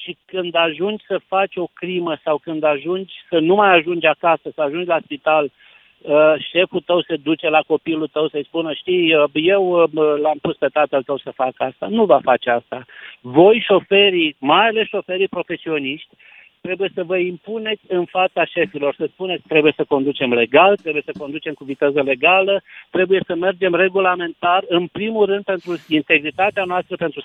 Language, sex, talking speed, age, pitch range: Romanian, male, 170 wpm, 60-79, 155-195 Hz